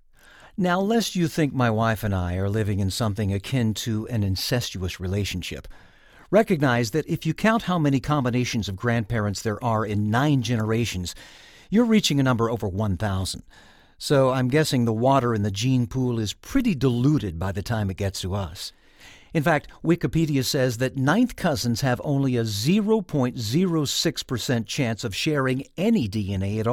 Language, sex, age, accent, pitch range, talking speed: English, male, 50-69, American, 105-150 Hz, 165 wpm